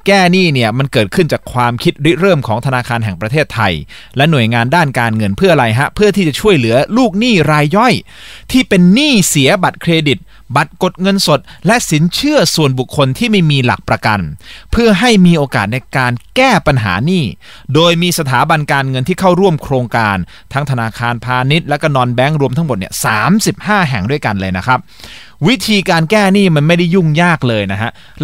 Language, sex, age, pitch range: Thai, male, 30-49, 125-190 Hz